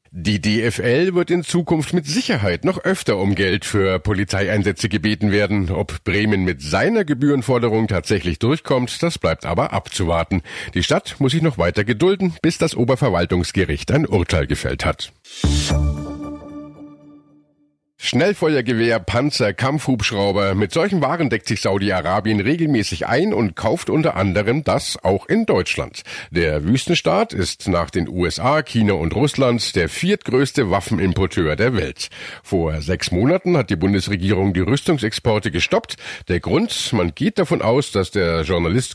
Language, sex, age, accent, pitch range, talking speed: German, male, 50-69, German, 95-145 Hz, 140 wpm